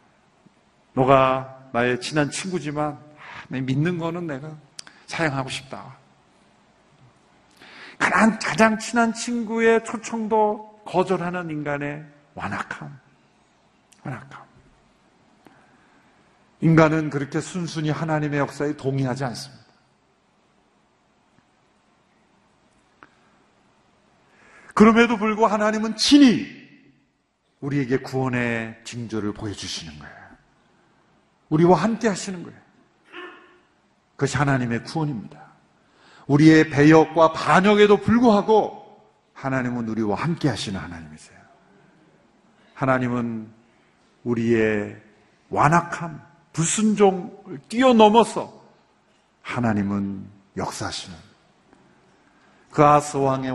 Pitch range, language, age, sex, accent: 130-215 Hz, Korean, 50-69, male, native